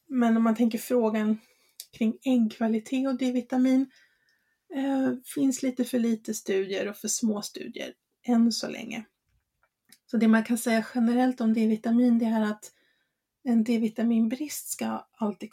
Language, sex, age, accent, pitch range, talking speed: English, female, 30-49, Swedish, 215-250 Hz, 140 wpm